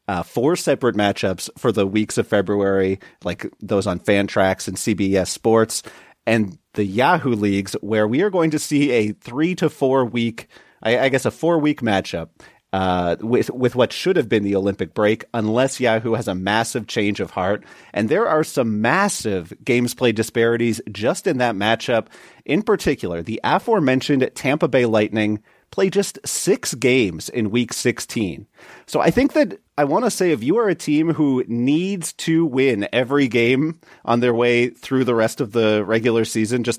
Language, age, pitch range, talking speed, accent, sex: English, 30-49, 110-145 Hz, 185 wpm, American, male